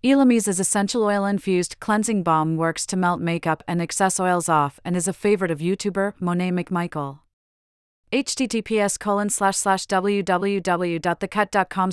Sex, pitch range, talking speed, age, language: female, 165-200 Hz, 115 wpm, 30-49, English